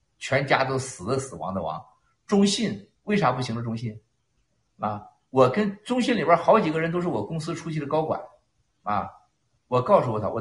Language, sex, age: Chinese, male, 50-69